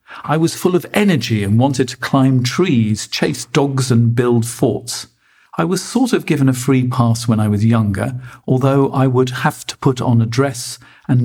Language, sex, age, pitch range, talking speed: English, male, 50-69, 115-145 Hz, 195 wpm